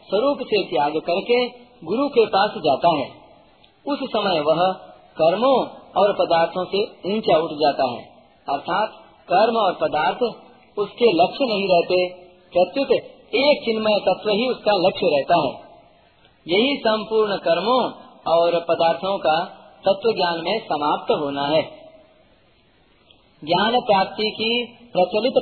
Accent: native